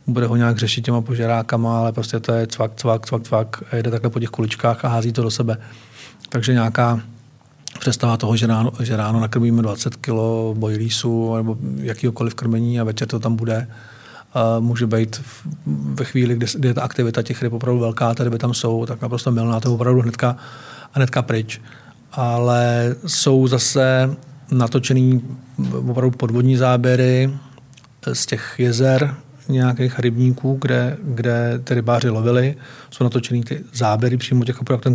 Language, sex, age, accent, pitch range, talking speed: Czech, male, 40-59, native, 115-130 Hz, 165 wpm